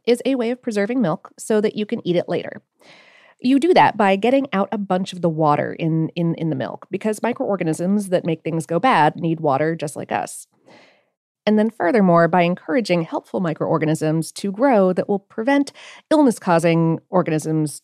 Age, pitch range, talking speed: 30-49, 165-235 Hz, 185 wpm